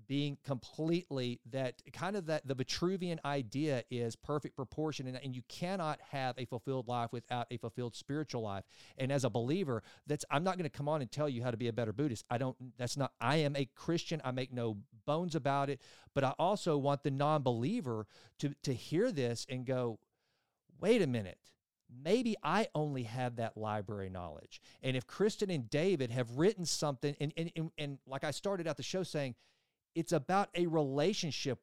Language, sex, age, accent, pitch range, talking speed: English, male, 40-59, American, 120-160 Hz, 195 wpm